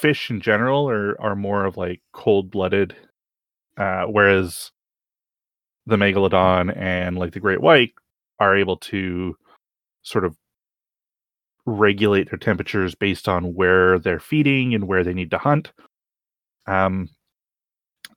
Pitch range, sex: 95-110 Hz, male